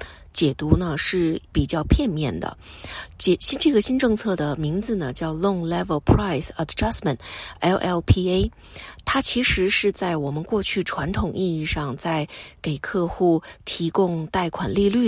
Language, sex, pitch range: Chinese, female, 160-200 Hz